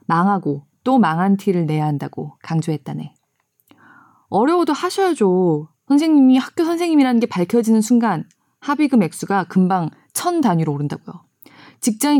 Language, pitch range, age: Korean, 150-225 Hz, 20-39